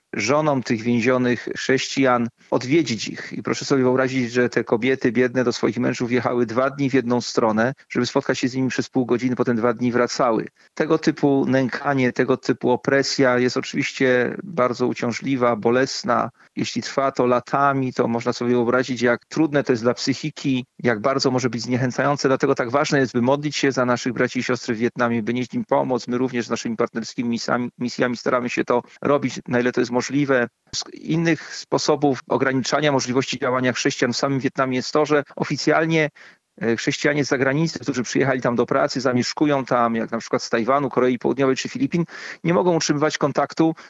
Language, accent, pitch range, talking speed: Polish, native, 125-145 Hz, 185 wpm